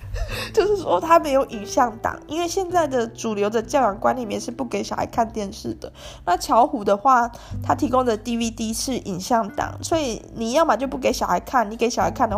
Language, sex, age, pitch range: Chinese, female, 20-39, 215-275 Hz